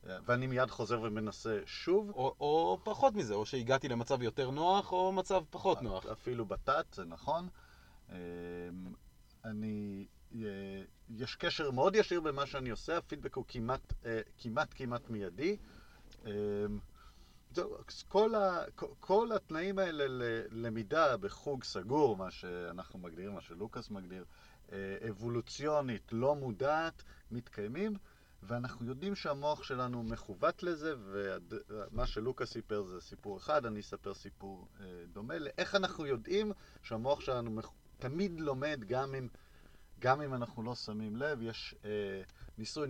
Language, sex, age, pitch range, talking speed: English, male, 40-59, 100-150 Hz, 120 wpm